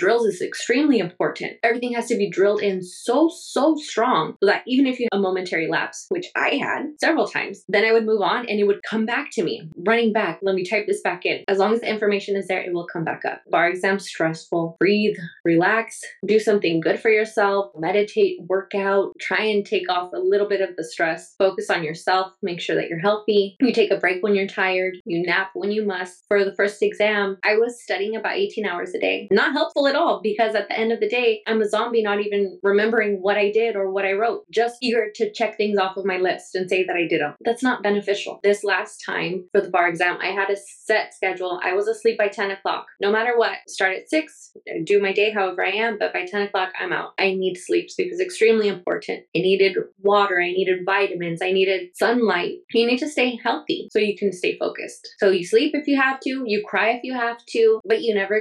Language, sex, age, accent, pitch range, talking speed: English, female, 20-39, American, 195-235 Hz, 240 wpm